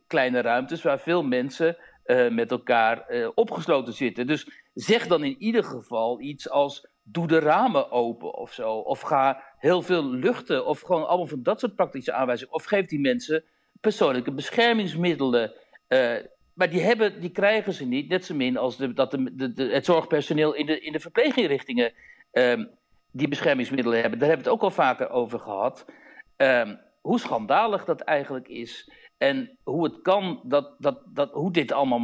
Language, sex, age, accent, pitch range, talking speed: Dutch, male, 60-79, Dutch, 135-220 Hz, 170 wpm